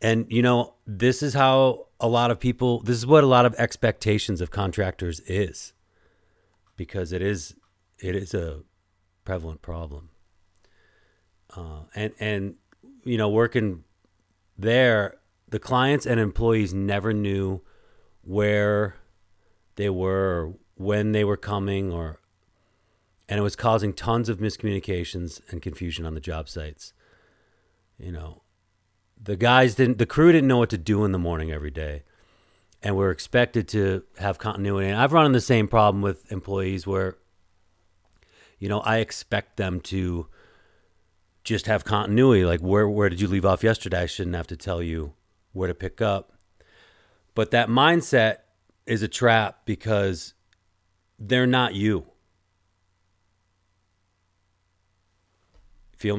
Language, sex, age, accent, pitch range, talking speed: English, male, 40-59, American, 90-110 Hz, 145 wpm